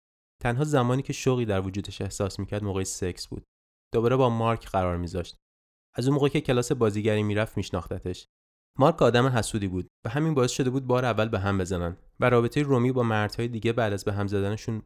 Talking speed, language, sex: 195 wpm, Persian, male